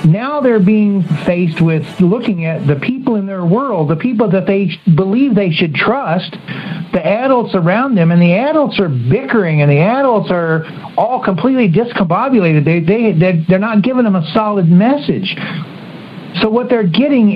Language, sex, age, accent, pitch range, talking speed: English, male, 60-79, American, 170-220 Hz, 170 wpm